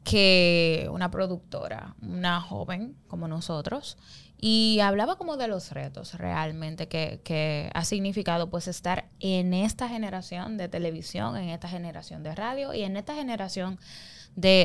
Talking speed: 145 wpm